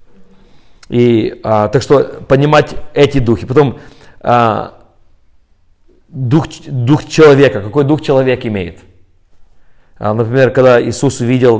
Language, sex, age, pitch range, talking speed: Russian, male, 30-49, 110-145 Hz, 110 wpm